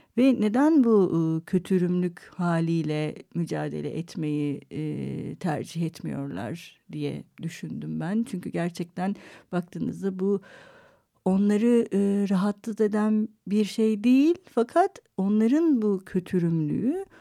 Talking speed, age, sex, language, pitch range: 100 wpm, 60-79, female, Turkish, 170-225 Hz